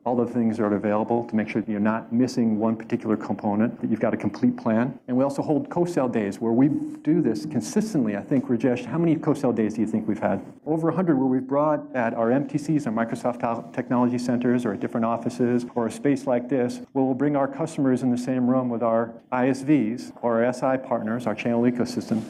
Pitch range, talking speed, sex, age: 115-135 Hz, 230 wpm, male, 50-69